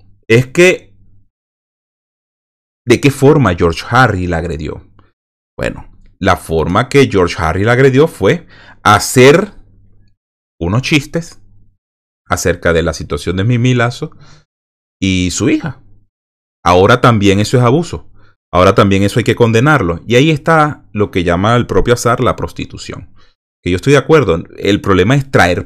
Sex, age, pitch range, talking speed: male, 30-49, 90-130 Hz, 145 wpm